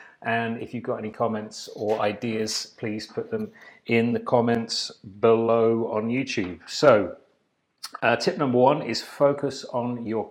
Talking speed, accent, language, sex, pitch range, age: 150 wpm, British, English, male, 105-115 Hz, 30-49